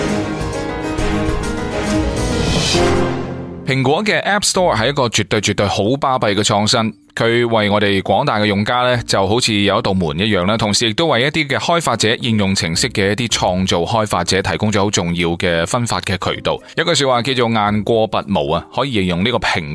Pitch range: 95-120 Hz